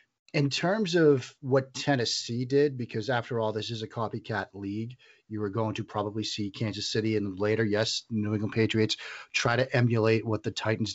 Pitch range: 110-125 Hz